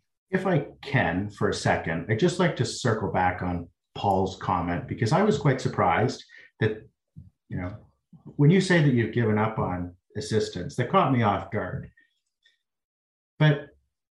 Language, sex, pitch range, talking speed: English, male, 105-140 Hz, 160 wpm